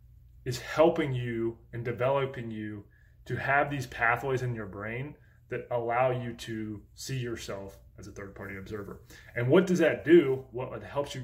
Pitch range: 110-130 Hz